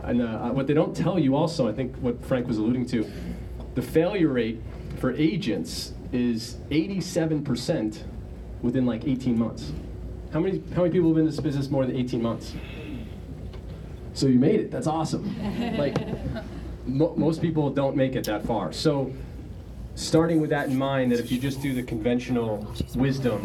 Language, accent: English, American